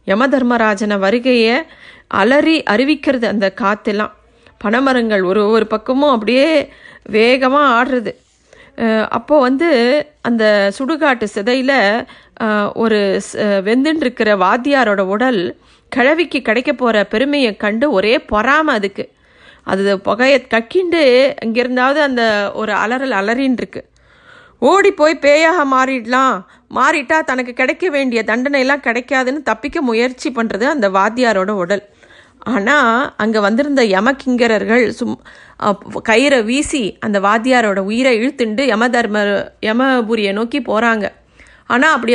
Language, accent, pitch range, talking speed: Tamil, native, 215-270 Hz, 105 wpm